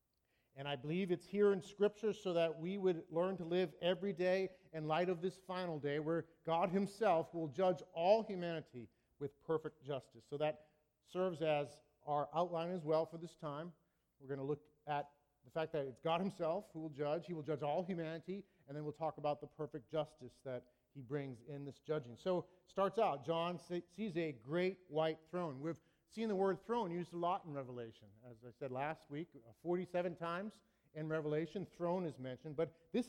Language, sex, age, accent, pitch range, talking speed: English, male, 40-59, American, 145-180 Hz, 200 wpm